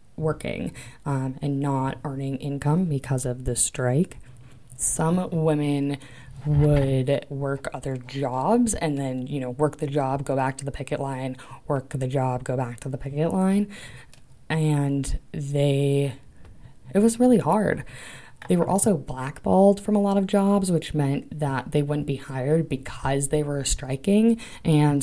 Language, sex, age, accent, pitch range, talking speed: English, female, 20-39, American, 135-160 Hz, 155 wpm